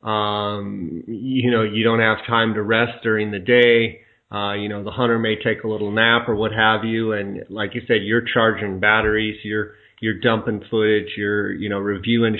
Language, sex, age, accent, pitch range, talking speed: English, male, 30-49, American, 105-115 Hz, 200 wpm